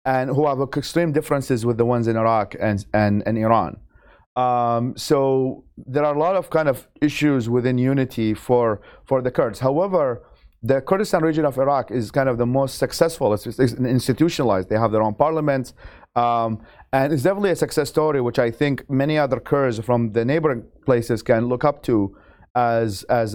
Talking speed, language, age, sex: 190 wpm, English, 30-49, male